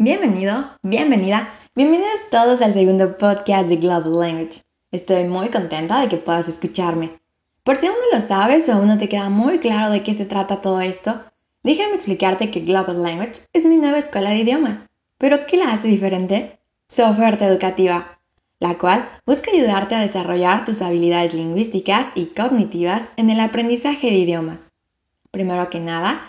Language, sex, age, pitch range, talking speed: Spanish, female, 20-39, 180-230 Hz, 170 wpm